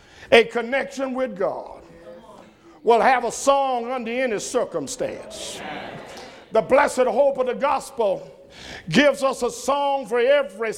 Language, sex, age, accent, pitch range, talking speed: English, male, 50-69, American, 225-290 Hz, 130 wpm